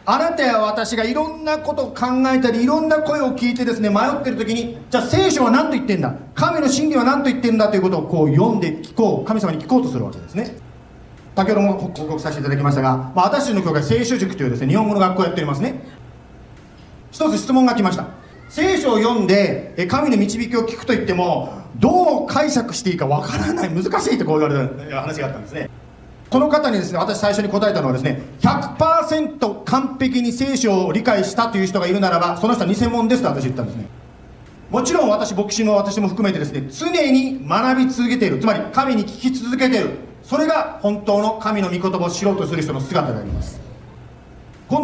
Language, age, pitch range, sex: Japanese, 40-59, 150-245 Hz, male